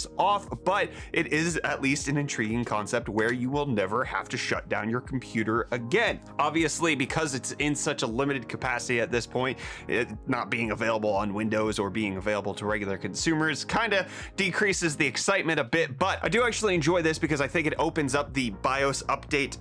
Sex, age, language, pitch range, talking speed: male, 30-49, English, 115-155 Hz, 195 wpm